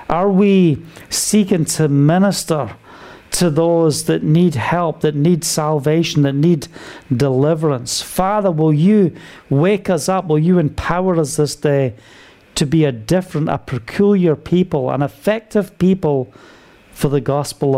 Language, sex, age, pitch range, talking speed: English, male, 40-59, 145-185 Hz, 140 wpm